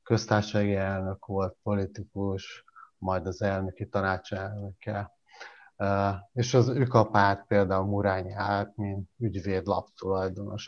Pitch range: 100-115 Hz